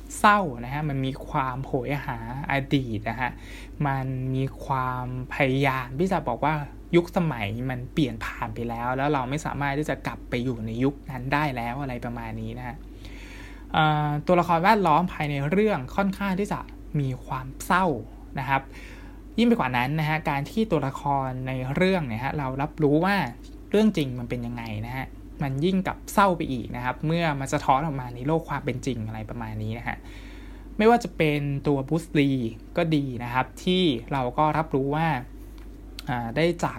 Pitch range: 125-155 Hz